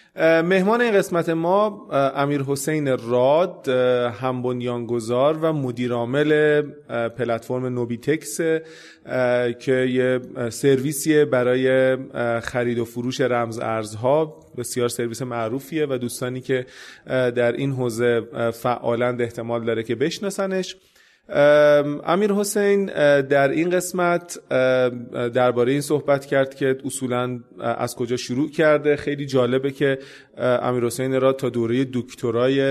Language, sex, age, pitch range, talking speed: Persian, male, 30-49, 120-150 Hz, 110 wpm